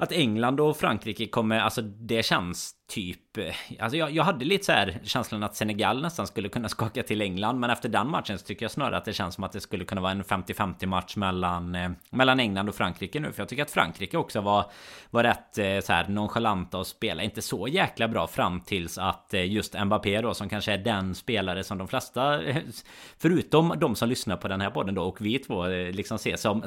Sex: male